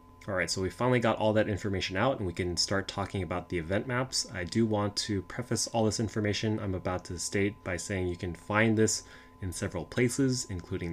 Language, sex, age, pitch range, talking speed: English, male, 20-39, 90-110 Hz, 225 wpm